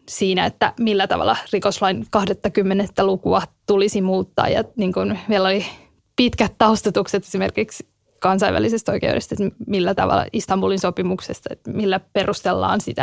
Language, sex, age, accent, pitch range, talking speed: Finnish, female, 10-29, native, 195-220 Hz, 125 wpm